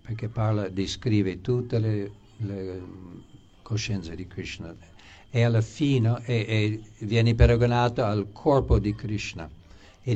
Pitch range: 95-115 Hz